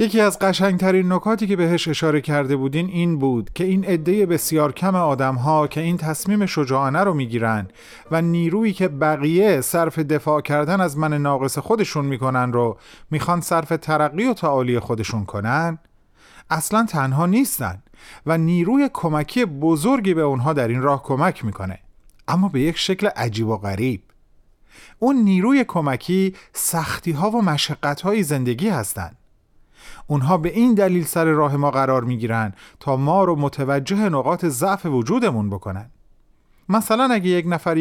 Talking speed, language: 155 wpm, Persian